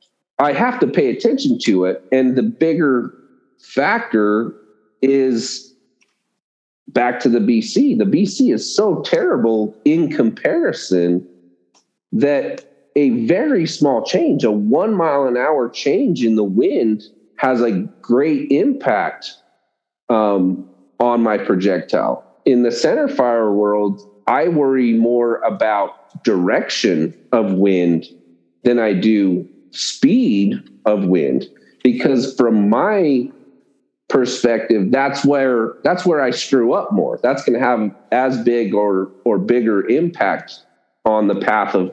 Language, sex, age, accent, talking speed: English, male, 40-59, American, 125 wpm